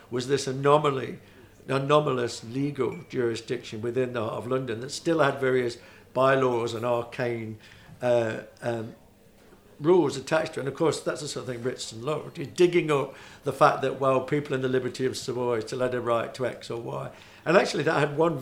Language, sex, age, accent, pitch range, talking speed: English, male, 60-79, British, 120-145 Hz, 195 wpm